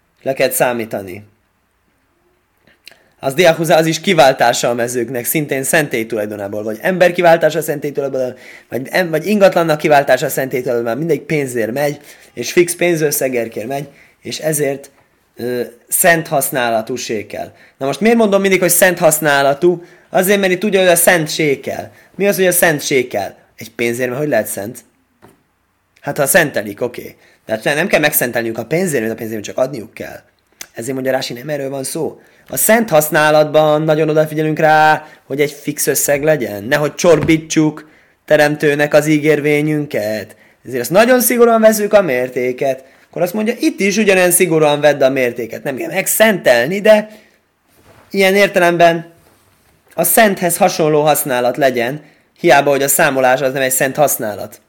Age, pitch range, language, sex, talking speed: 20-39, 130-175 Hz, Hungarian, male, 150 wpm